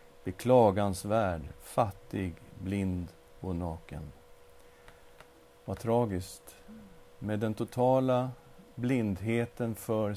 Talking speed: 85 wpm